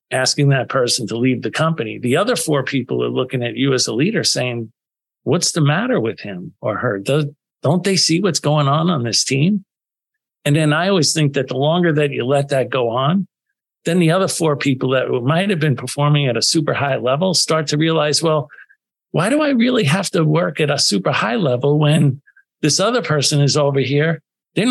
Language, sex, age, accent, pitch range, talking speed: English, male, 50-69, American, 130-165 Hz, 215 wpm